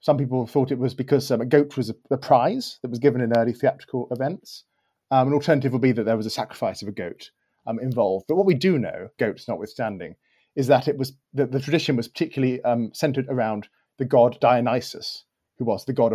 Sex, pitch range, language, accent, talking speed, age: male, 120-145 Hz, English, British, 225 wpm, 30-49